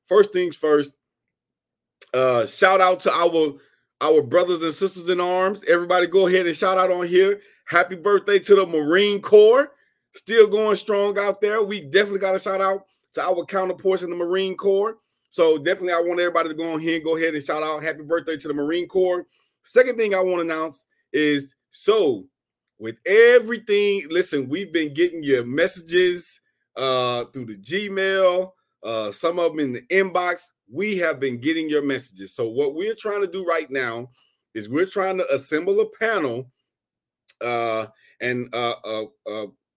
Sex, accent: male, American